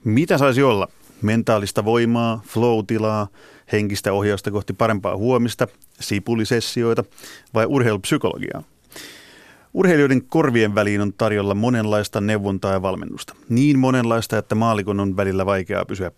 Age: 30-49